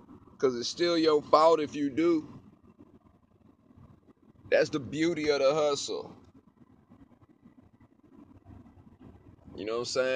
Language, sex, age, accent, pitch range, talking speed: English, male, 30-49, American, 140-180 Hz, 100 wpm